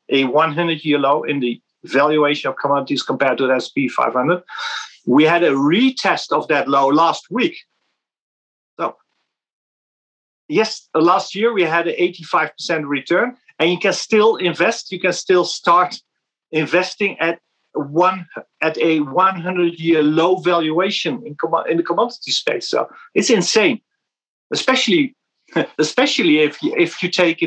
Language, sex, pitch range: English, male, 155-185 Hz